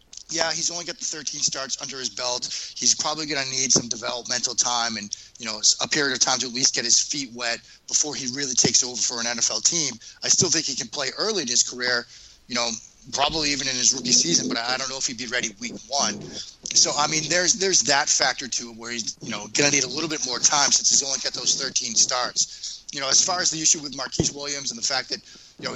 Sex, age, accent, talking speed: male, 30-49, American, 265 wpm